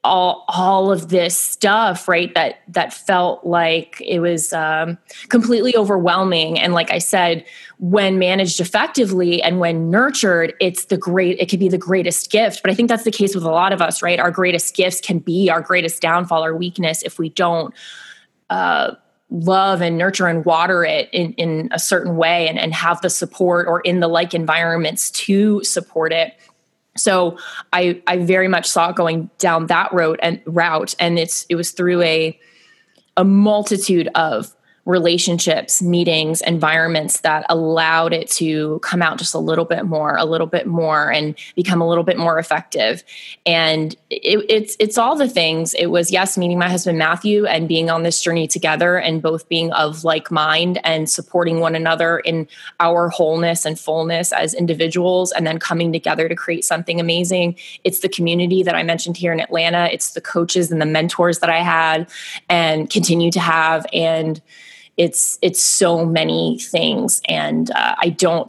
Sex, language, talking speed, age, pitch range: female, English, 180 wpm, 20-39, 165-185 Hz